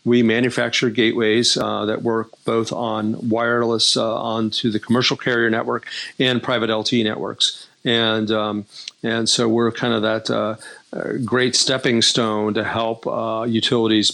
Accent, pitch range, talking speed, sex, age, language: American, 110-125 Hz, 150 wpm, male, 40-59, English